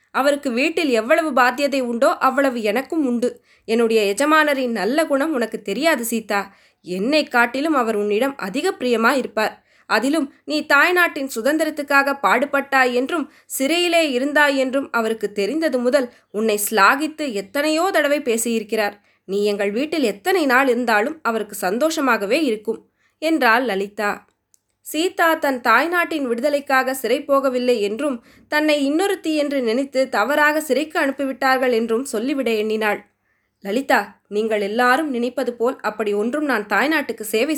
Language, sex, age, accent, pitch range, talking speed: Tamil, female, 20-39, native, 220-290 Hz, 120 wpm